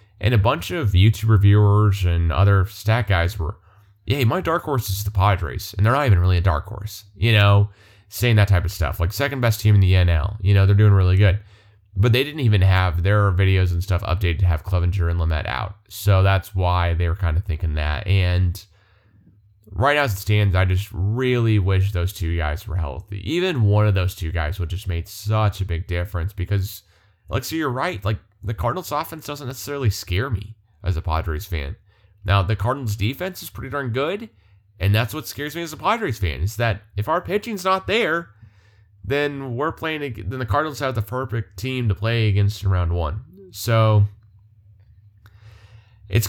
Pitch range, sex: 95-110 Hz, male